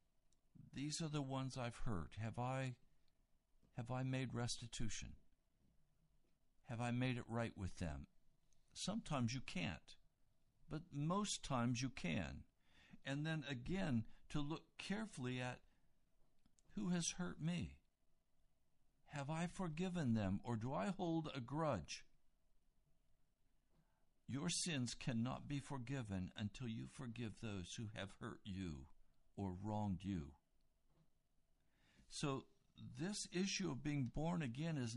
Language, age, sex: English, 60-79, male